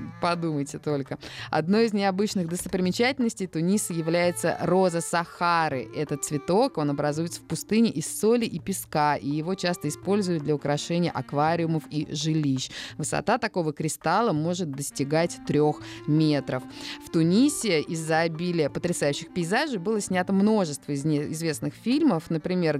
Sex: female